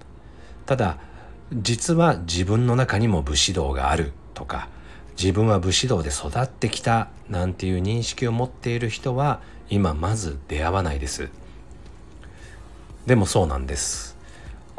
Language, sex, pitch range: Japanese, male, 75-115 Hz